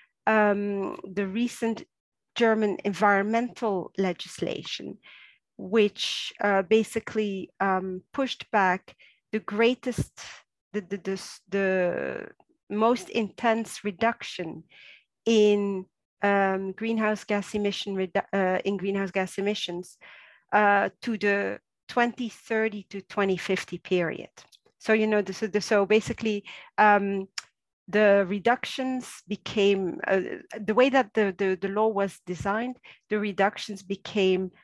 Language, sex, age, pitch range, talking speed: English, female, 40-59, 185-220 Hz, 105 wpm